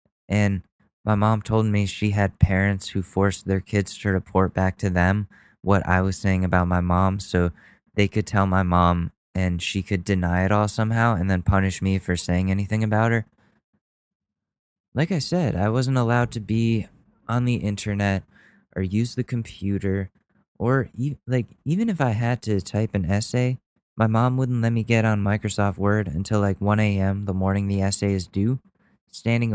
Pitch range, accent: 95-120 Hz, American